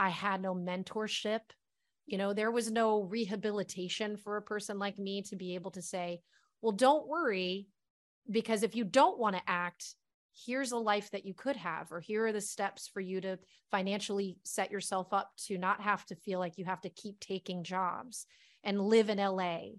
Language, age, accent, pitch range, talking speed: English, 30-49, American, 185-215 Hz, 195 wpm